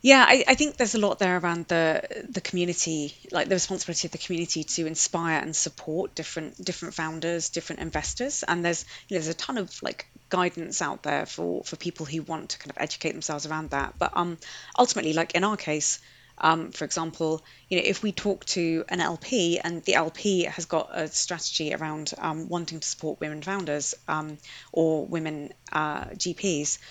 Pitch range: 155-180 Hz